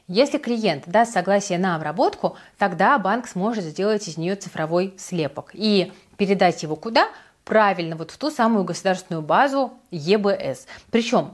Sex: female